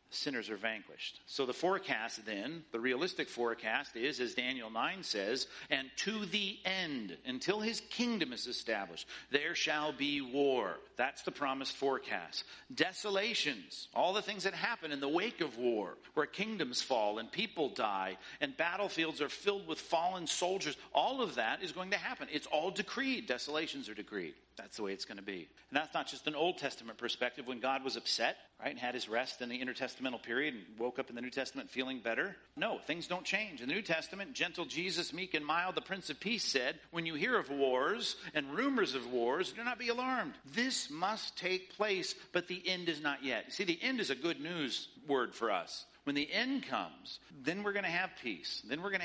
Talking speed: 210 wpm